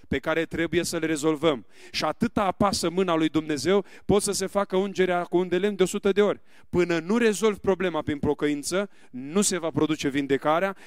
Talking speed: 195 wpm